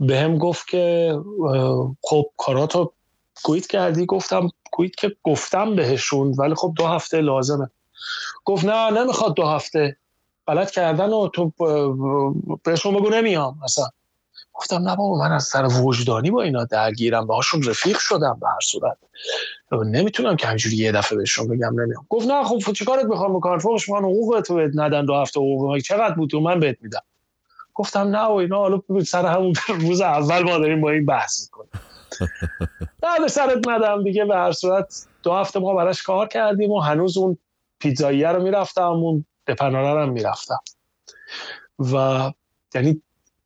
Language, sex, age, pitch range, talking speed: Persian, male, 30-49, 140-195 Hz, 160 wpm